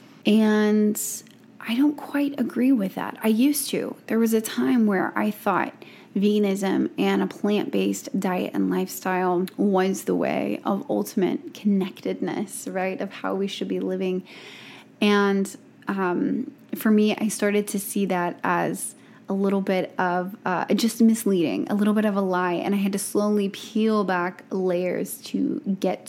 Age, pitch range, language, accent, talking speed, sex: 20-39, 190-220 Hz, English, American, 160 wpm, female